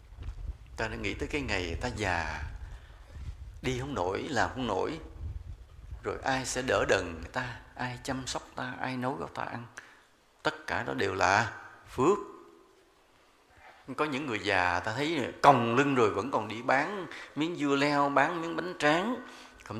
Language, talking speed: English, 175 wpm